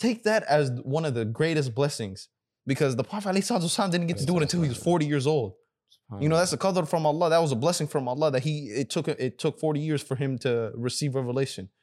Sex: male